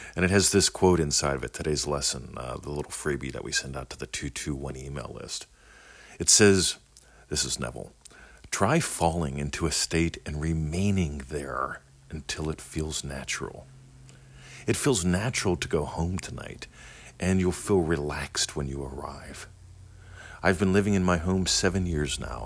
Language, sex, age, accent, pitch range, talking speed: English, male, 50-69, American, 70-95 Hz, 170 wpm